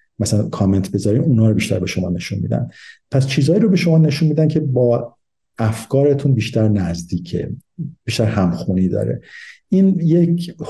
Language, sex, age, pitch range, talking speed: Persian, male, 50-69, 100-130 Hz, 150 wpm